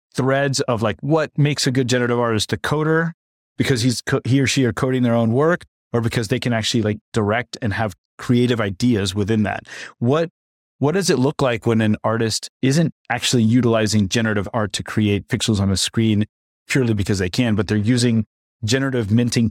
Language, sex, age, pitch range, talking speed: English, male, 30-49, 105-125 Hz, 195 wpm